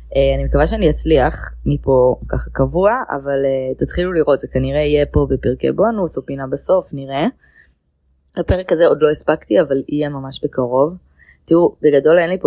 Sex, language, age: female, English, 20-39